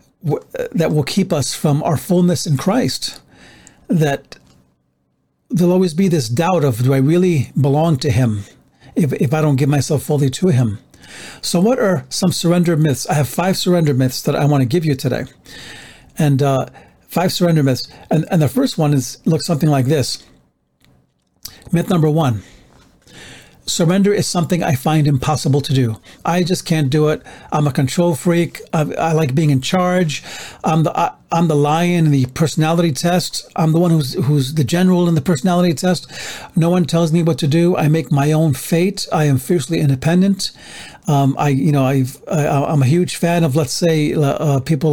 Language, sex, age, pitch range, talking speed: English, male, 40-59, 140-170 Hz, 190 wpm